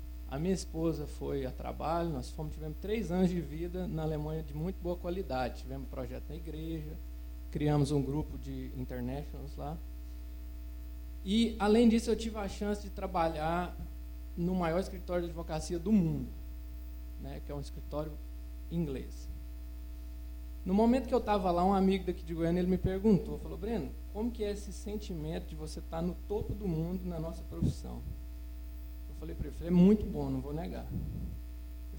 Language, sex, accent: Portuguese, male, Brazilian